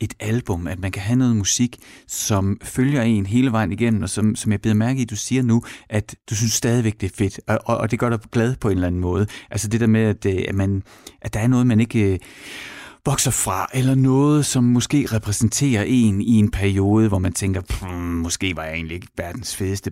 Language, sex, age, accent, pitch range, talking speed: Danish, male, 30-49, native, 105-140 Hz, 235 wpm